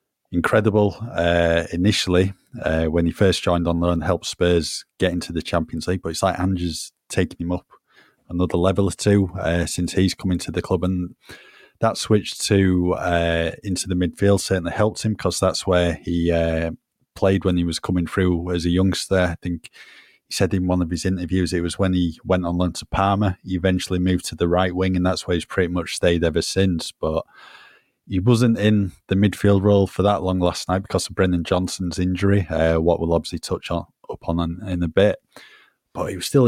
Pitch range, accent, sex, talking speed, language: 85-100 Hz, British, male, 205 wpm, English